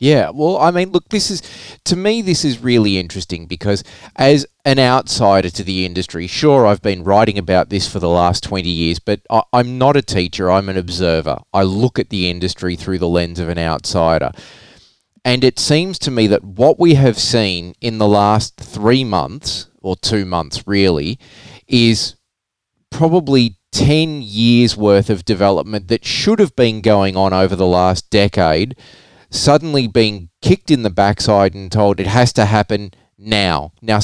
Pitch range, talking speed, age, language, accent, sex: 95-125 Hz, 175 wpm, 30-49, English, Australian, male